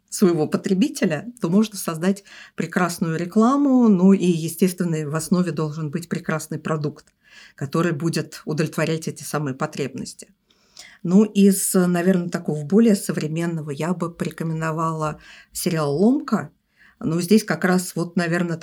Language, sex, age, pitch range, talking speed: Russian, female, 50-69, 160-200 Hz, 130 wpm